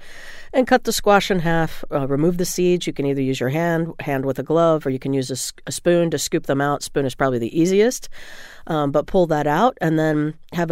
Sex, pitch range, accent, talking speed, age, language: female, 140-175 Hz, American, 245 wpm, 40-59, English